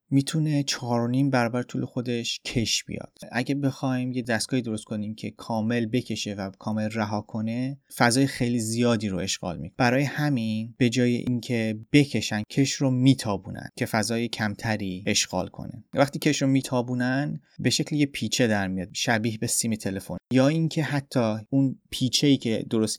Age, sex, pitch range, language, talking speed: 30-49, male, 110-135 Hz, Persian, 160 wpm